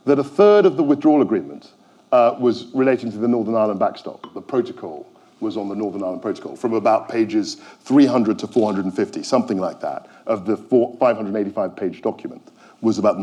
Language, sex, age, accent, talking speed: English, male, 50-69, British, 175 wpm